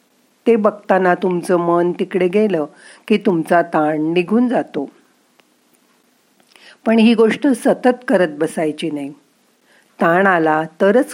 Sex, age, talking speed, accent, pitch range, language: female, 50-69, 115 wpm, native, 160-225 Hz, Marathi